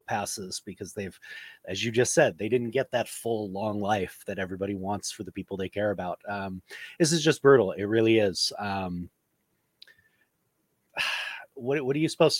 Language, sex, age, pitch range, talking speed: English, male, 30-49, 110-135 Hz, 180 wpm